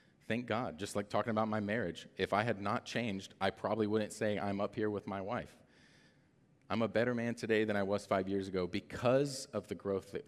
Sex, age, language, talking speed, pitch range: male, 40-59, English, 230 wpm, 90-115 Hz